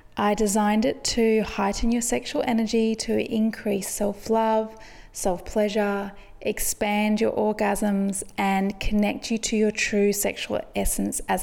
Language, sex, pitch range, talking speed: English, female, 200-230 Hz, 125 wpm